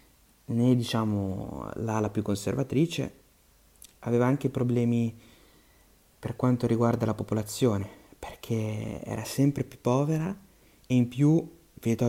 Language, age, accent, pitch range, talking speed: Italian, 30-49, native, 105-125 Hz, 110 wpm